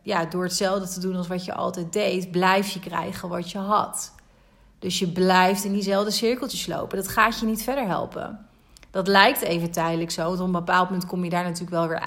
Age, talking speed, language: 30-49, 225 wpm, Dutch